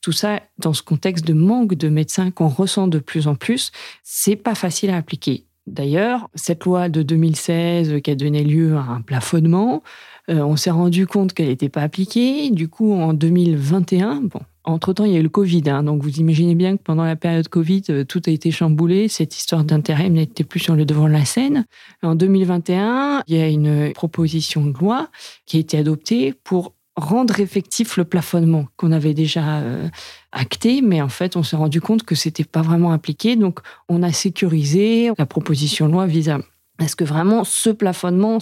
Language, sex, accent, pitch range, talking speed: French, female, French, 155-190 Hz, 200 wpm